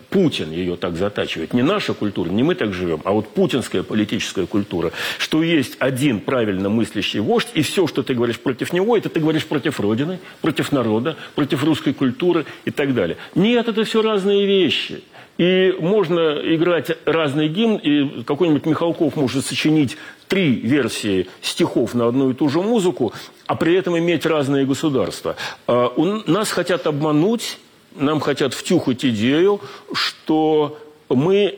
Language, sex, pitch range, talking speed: Russian, male, 130-175 Hz, 155 wpm